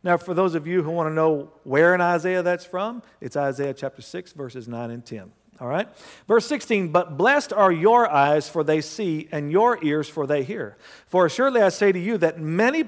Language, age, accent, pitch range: English, 50-69, American, 135-195 Hz